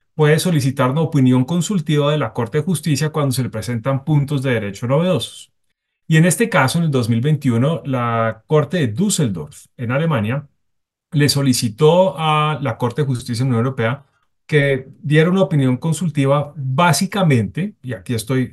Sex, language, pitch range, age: male, Spanish, 125-155 Hz, 30-49